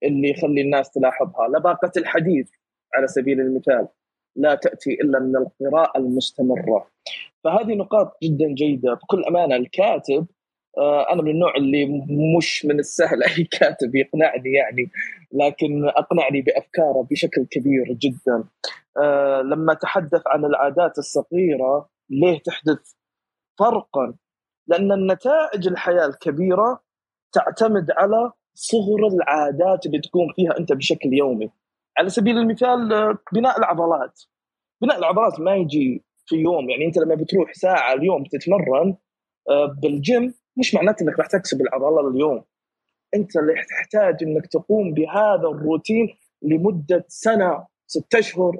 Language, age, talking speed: Arabic, 20-39, 120 wpm